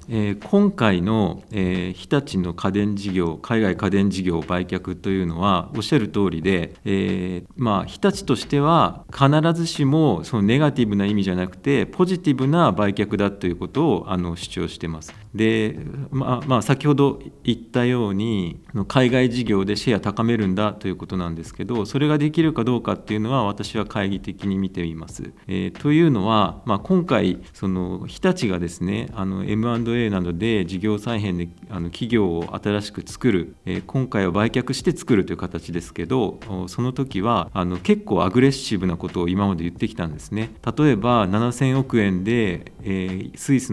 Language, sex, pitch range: Japanese, male, 90-120 Hz